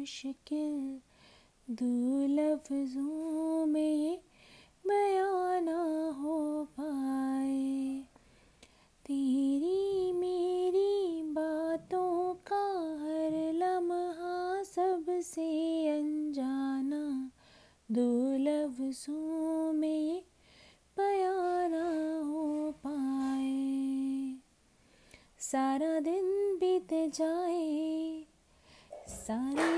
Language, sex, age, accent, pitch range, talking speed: Hindi, female, 20-39, native, 275-360 Hz, 50 wpm